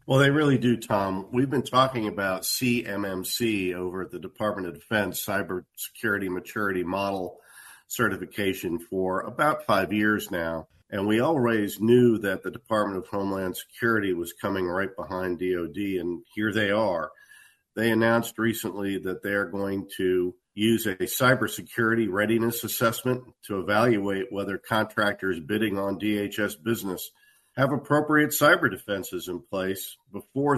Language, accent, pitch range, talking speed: English, American, 95-115 Hz, 140 wpm